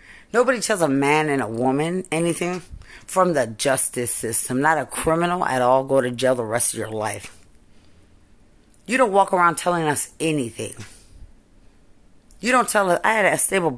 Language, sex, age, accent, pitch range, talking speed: English, female, 30-49, American, 110-170 Hz, 175 wpm